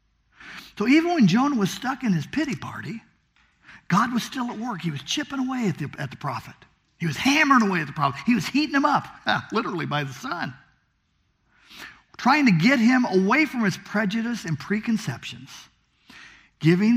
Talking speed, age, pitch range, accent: 175 wpm, 50-69, 145-230 Hz, American